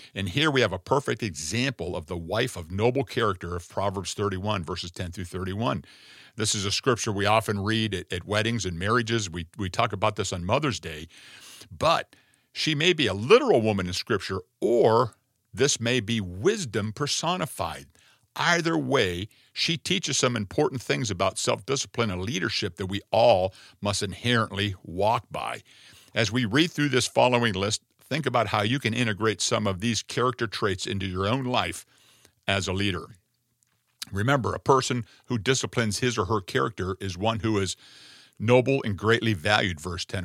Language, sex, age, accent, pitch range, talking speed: English, male, 50-69, American, 100-125 Hz, 175 wpm